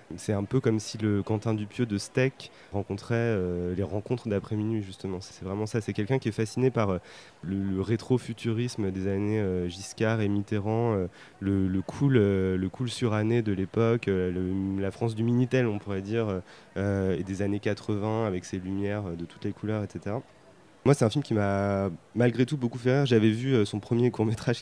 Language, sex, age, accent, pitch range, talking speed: French, male, 30-49, French, 100-120 Hz, 195 wpm